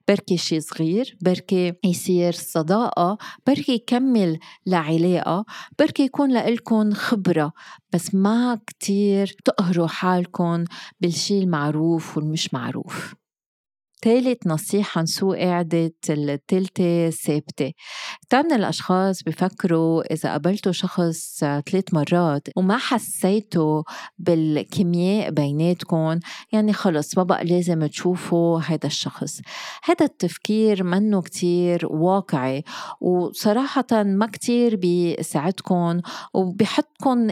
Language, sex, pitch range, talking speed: Arabic, female, 165-215 Hz, 95 wpm